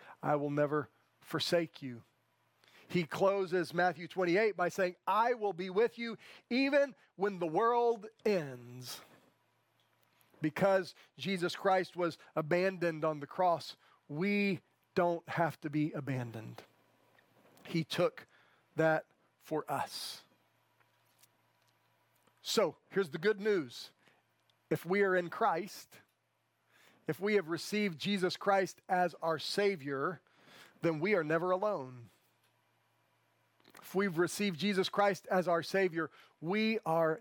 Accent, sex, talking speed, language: American, male, 120 wpm, English